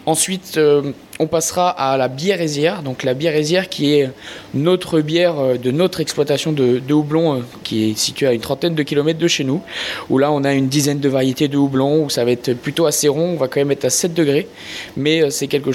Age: 20-39